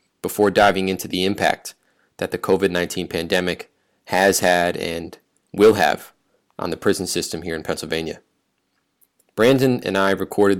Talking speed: 145 wpm